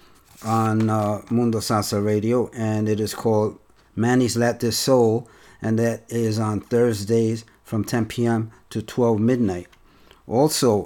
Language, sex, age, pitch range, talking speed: English, male, 50-69, 110-125 Hz, 140 wpm